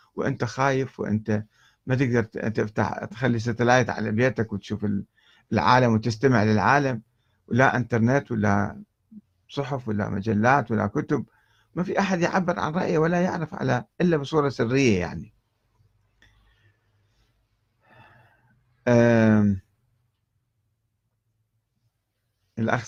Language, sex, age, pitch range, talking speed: Arabic, male, 50-69, 110-140 Hz, 95 wpm